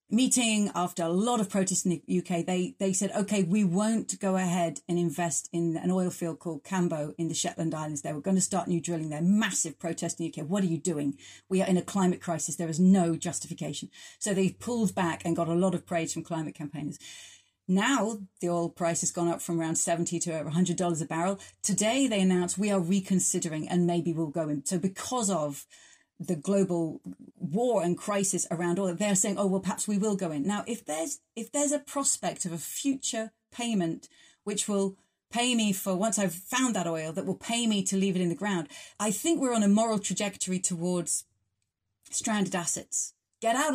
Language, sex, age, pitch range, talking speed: English, female, 40-59, 170-205 Hz, 215 wpm